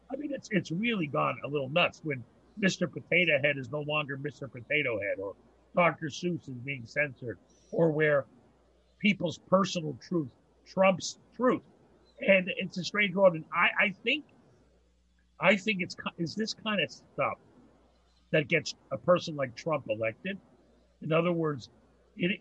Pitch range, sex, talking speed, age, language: 140-185 Hz, male, 160 wpm, 50-69, English